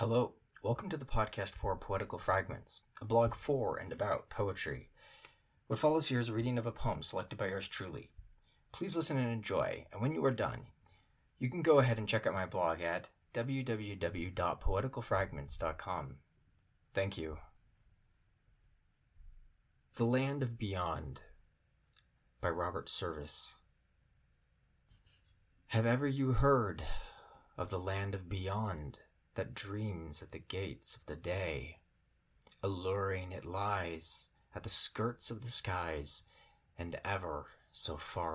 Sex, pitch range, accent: male, 85-115 Hz, American